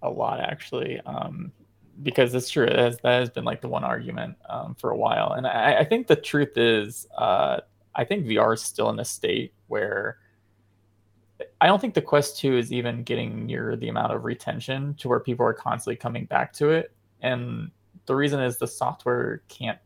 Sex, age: male, 20-39